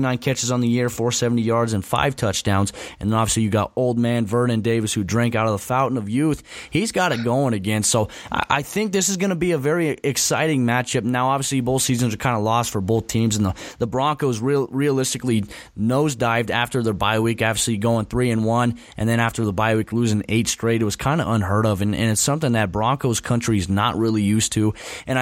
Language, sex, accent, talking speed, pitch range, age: English, male, American, 240 wpm, 105-125 Hz, 20-39